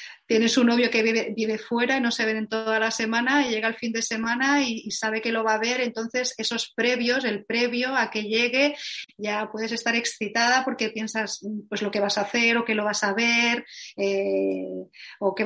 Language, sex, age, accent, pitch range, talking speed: Spanish, female, 30-49, Spanish, 210-235 Hz, 220 wpm